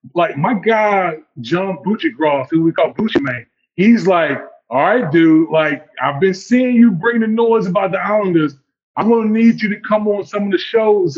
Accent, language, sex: American, English, male